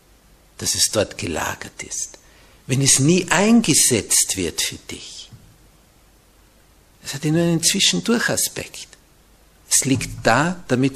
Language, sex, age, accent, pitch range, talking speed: German, male, 60-79, Austrian, 100-135 Hz, 120 wpm